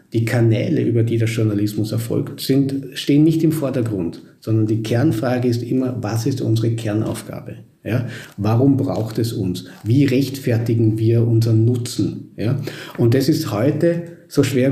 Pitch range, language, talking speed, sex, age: 115-140 Hz, German, 155 wpm, male, 50-69